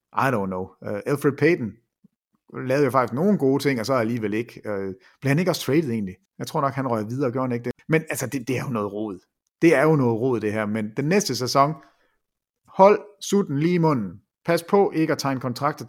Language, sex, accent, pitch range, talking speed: English, male, Danish, 125-165 Hz, 230 wpm